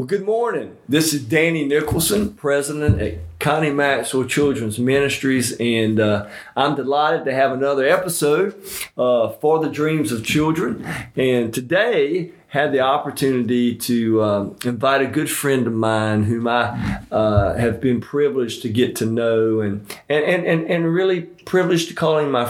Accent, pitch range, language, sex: American, 120-150 Hz, English, male